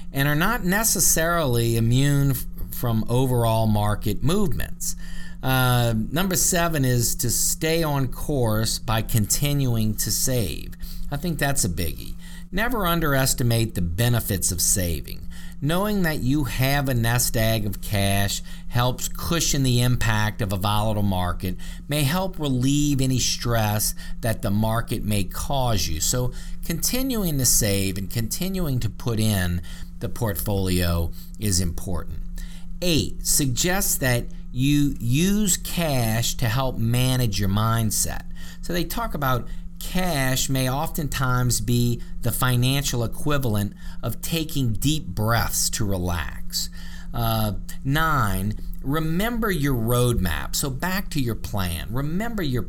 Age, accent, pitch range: 50-69, American, 100-145 Hz